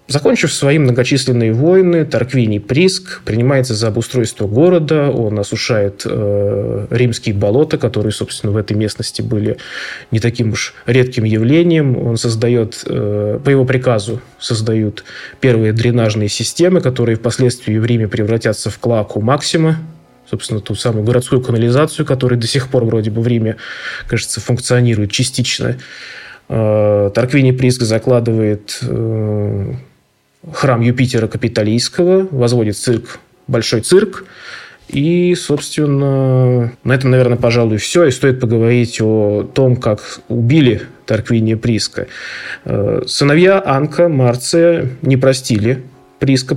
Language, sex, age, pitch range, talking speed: Russian, male, 20-39, 110-135 Hz, 120 wpm